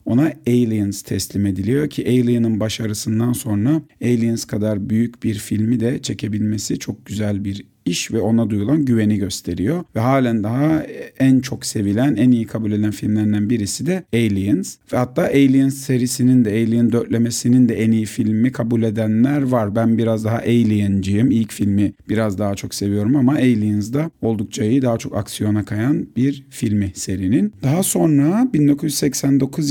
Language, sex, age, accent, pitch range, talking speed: Turkish, male, 40-59, native, 110-140 Hz, 155 wpm